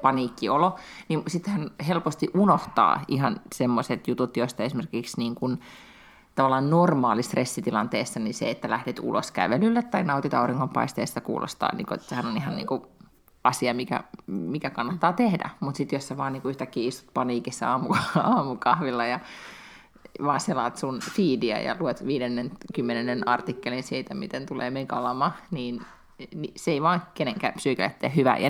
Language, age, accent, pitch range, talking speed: Finnish, 30-49, native, 130-175 Hz, 140 wpm